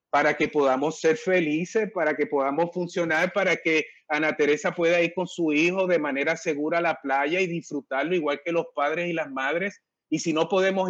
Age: 30-49